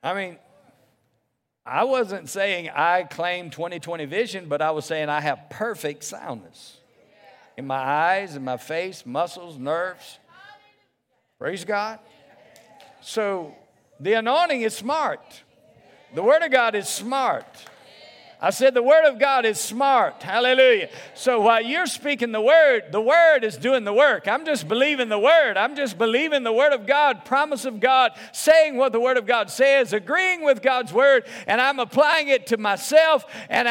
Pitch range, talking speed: 200-285 Hz, 165 wpm